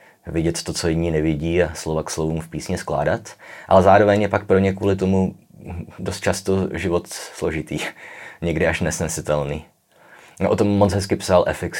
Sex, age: male, 30-49